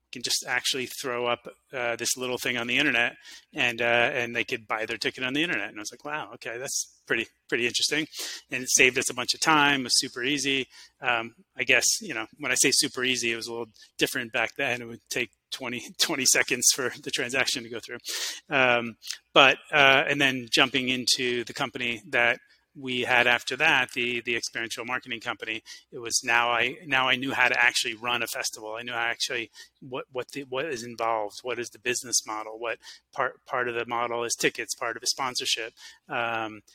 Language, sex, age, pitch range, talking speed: English, male, 30-49, 115-130 Hz, 220 wpm